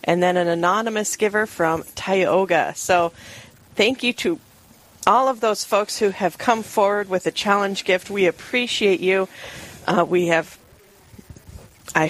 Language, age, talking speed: English, 40-59, 150 wpm